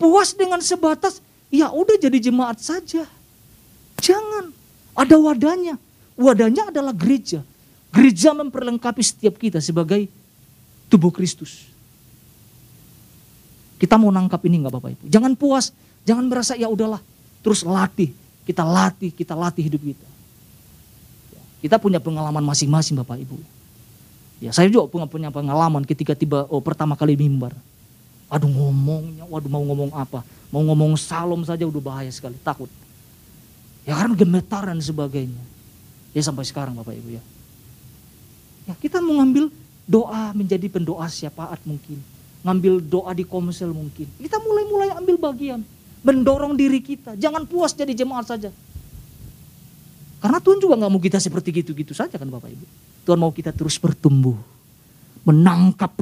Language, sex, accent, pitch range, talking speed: Indonesian, male, native, 145-235 Hz, 135 wpm